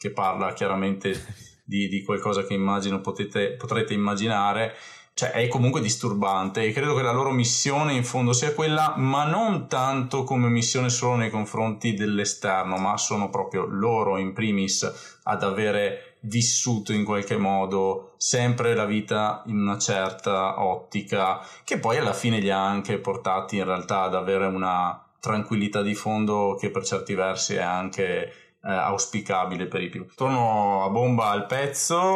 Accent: native